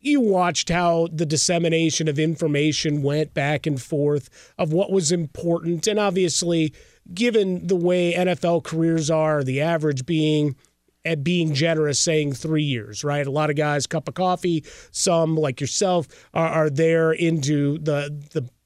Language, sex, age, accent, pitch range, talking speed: English, male, 30-49, American, 150-175 Hz, 160 wpm